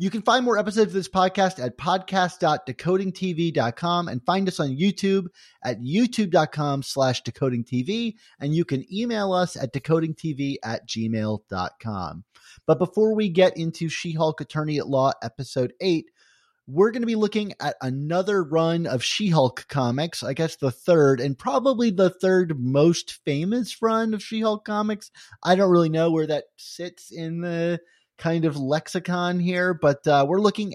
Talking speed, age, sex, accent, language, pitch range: 160 wpm, 30-49, male, American, English, 140-190 Hz